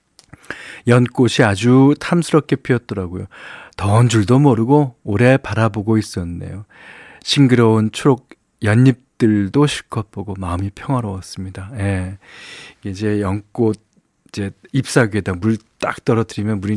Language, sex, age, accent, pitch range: Korean, male, 40-59, native, 105-145 Hz